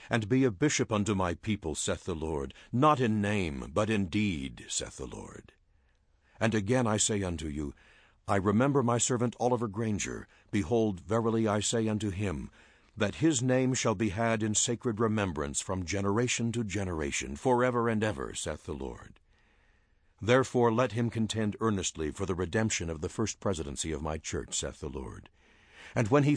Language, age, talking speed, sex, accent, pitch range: English, 60-79, 180 wpm, male, American, 85-115 Hz